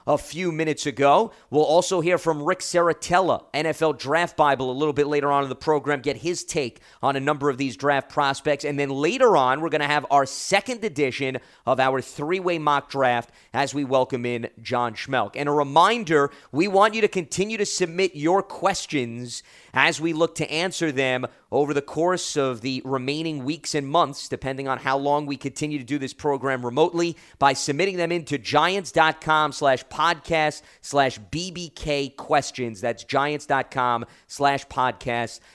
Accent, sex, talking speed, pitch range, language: American, male, 175 wpm, 135-165 Hz, English